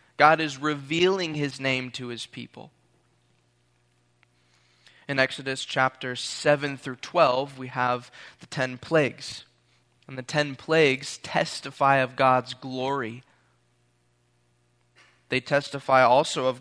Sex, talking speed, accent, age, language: male, 110 wpm, American, 20-39, English